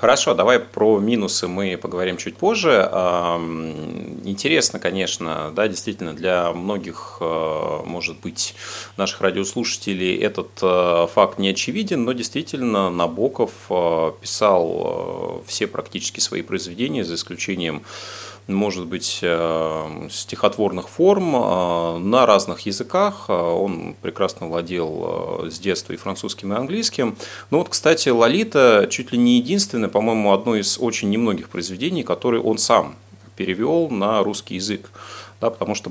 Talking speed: 120 wpm